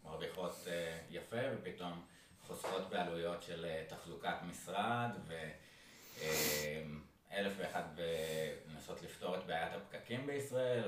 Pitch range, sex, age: 80-100 Hz, male, 20-39